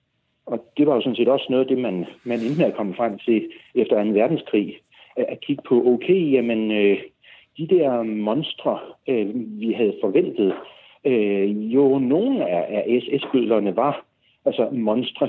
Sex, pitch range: male, 115-160 Hz